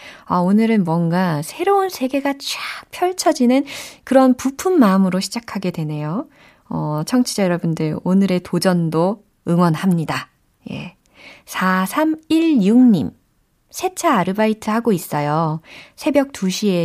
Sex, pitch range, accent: female, 165-245 Hz, native